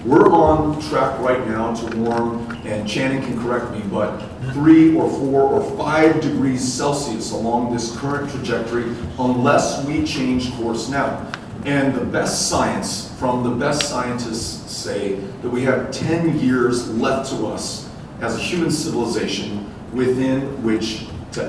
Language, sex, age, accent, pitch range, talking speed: English, male, 40-59, American, 110-130 Hz, 150 wpm